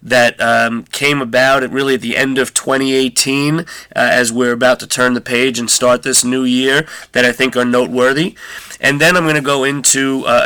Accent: American